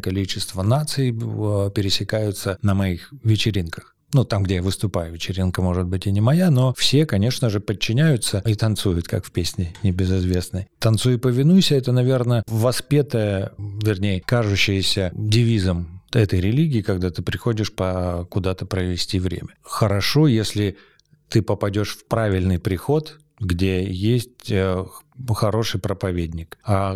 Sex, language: male, Russian